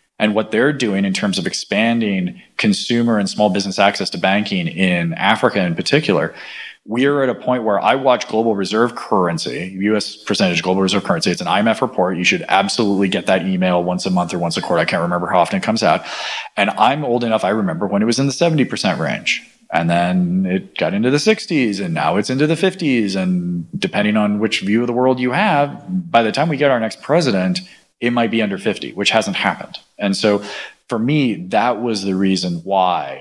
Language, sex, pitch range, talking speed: English, male, 95-140 Hz, 220 wpm